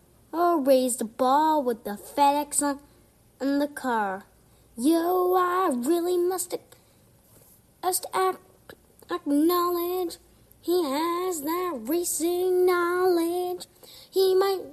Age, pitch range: 10-29, 295-365 Hz